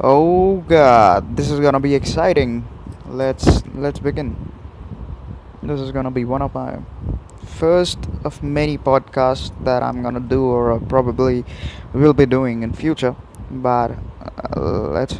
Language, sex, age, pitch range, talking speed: English, male, 20-39, 110-150 Hz, 140 wpm